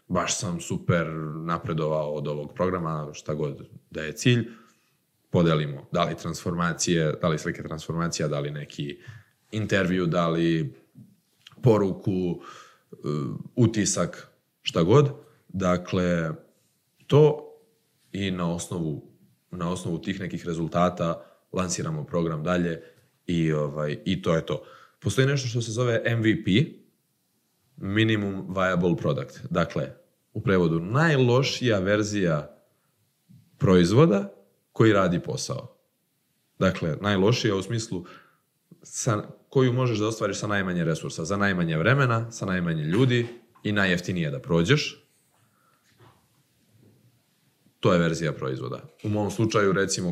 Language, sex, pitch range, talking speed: Croatian, male, 85-120 Hz, 115 wpm